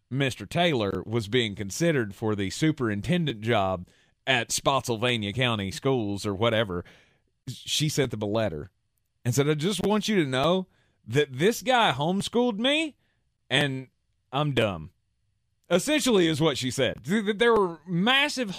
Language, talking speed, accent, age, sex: English, 140 wpm, American, 30-49, male